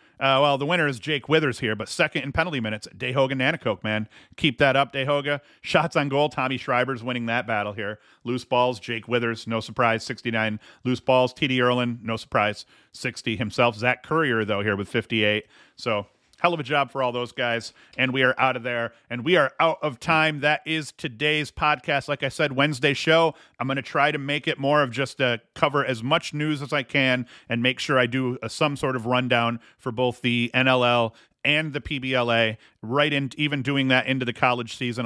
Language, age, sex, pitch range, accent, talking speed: English, 40-59, male, 115-145 Hz, American, 210 wpm